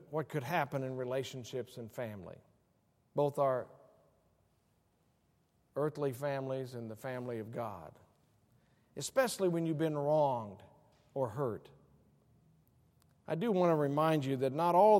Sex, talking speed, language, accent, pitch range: male, 130 wpm, English, American, 130-180 Hz